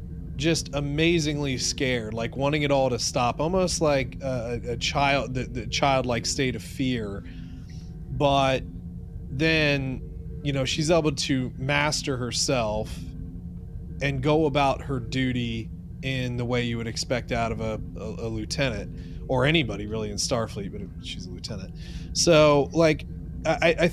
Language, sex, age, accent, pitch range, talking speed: English, male, 30-49, American, 110-140 Hz, 150 wpm